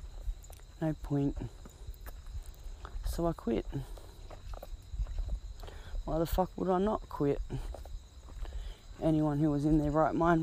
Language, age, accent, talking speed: English, 20-39, Australian, 110 wpm